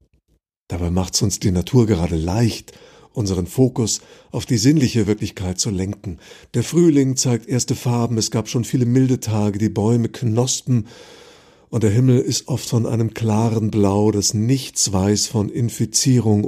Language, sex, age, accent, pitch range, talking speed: German, male, 50-69, German, 100-125 Hz, 160 wpm